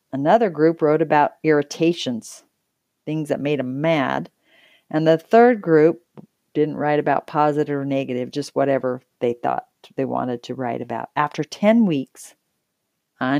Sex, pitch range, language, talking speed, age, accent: female, 140-175 Hz, English, 150 wpm, 40-59, American